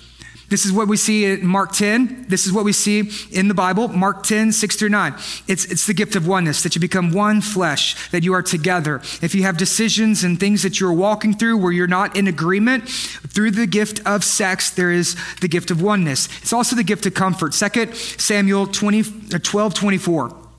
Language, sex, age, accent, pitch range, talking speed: English, male, 30-49, American, 185-215 Hz, 215 wpm